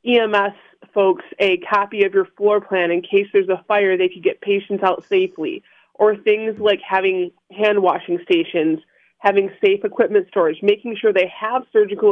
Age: 20-39